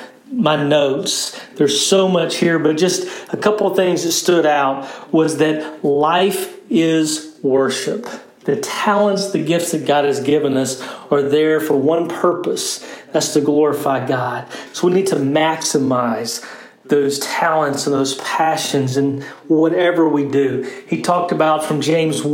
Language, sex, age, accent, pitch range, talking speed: English, male, 40-59, American, 140-175 Hz, 155 wpm